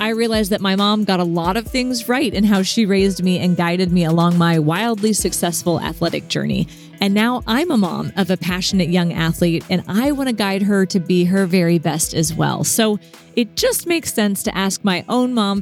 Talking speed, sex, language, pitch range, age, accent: 225 wpm, female, English, 175-220 Hz, 30-49, American